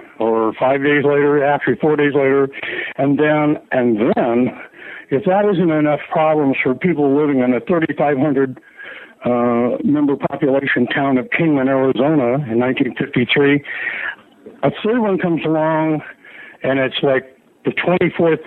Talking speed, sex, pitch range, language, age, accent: 135 wpm, male, 140-190 Hz, English, 60-79, American